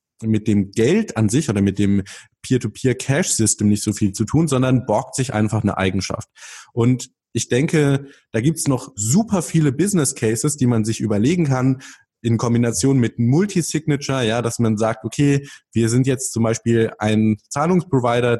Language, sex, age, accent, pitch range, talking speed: German, male, 20-39, German, 110-135 Hz, 165 wpm